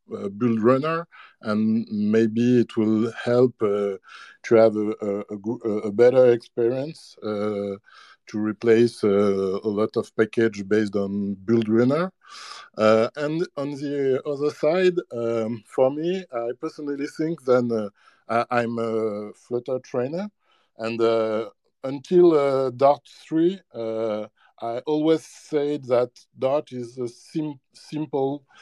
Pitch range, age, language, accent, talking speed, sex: 115-145 Hz, 60-79, English, French, 125 wpm, male